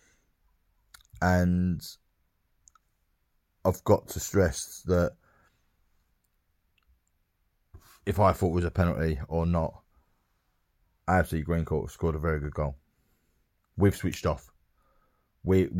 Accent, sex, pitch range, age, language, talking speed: British, male, 80-100 Hz, 30-49, English, 105 wpm